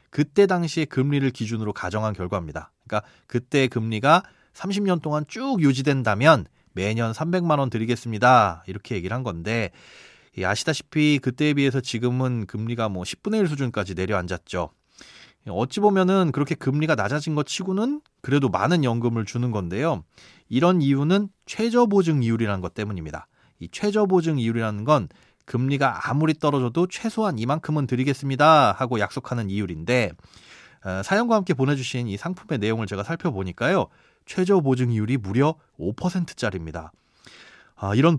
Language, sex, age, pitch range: Korean, male, 30-49, 110-160 Hz